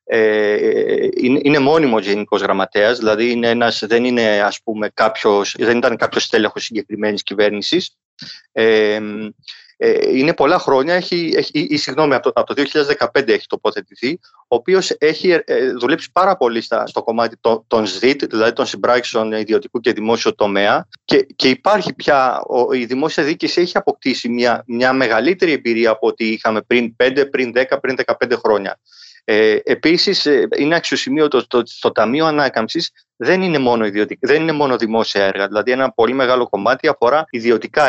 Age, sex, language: 30-49, male, Greek